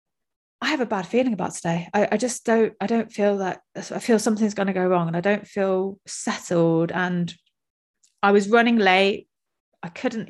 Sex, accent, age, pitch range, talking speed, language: female, British, 30-49, 170-200 Hz, 200 wpm, English